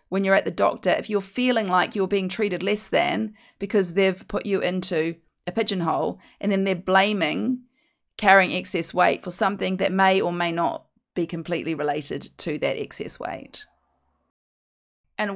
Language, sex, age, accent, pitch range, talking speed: English, female, 30-49, Australian, 180-235 Hz, 170 wpm